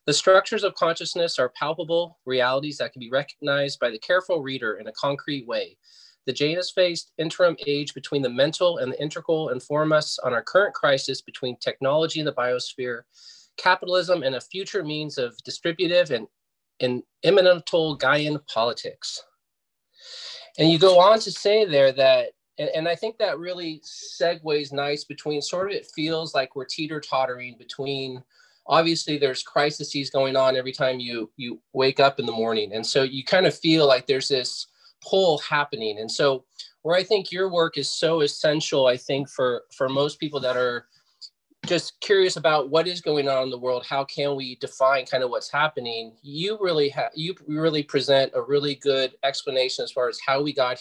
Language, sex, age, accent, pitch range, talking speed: English, male, 30-49, American, 130-175 Hz, 185 wpm